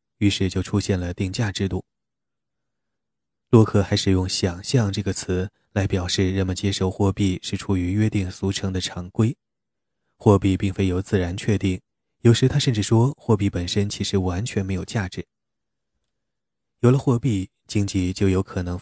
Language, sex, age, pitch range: Chinese, male, 20-39, 95-110 Hz